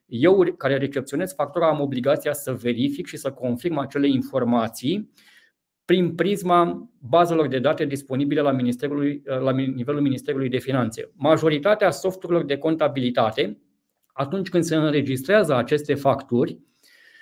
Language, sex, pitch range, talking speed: Romanian, male, 140-175 Hz, 120 wpm